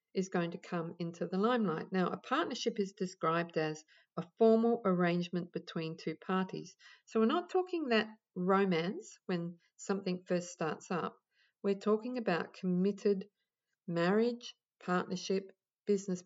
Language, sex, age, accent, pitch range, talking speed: English, female, 50-69, Australian, 175-215 Hz, 135 wpm